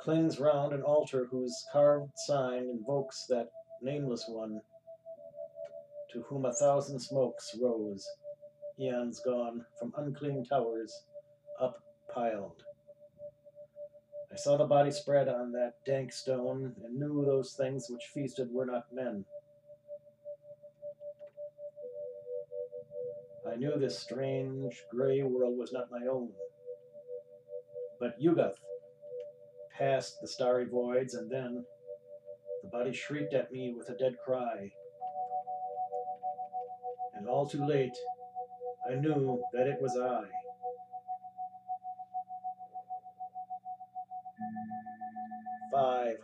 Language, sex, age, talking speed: English, male, 50-69, 105 wpm